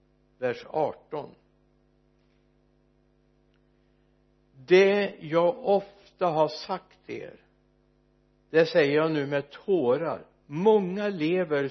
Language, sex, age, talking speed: Swedish, male, 60-79, 80 wpm